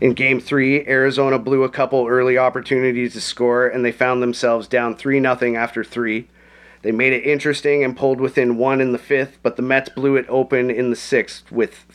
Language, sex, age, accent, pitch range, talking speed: English, male, 30-49, American, 115-135 Hz, 200 wpm